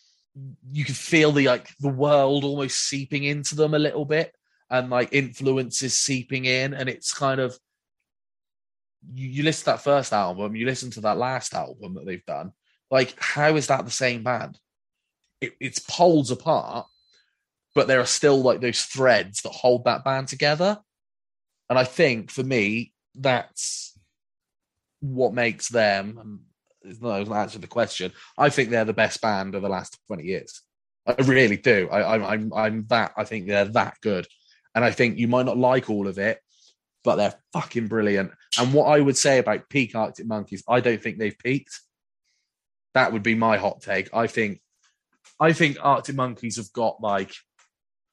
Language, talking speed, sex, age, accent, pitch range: English, 180 wpm, male, 20-39, British, 110-140 Hz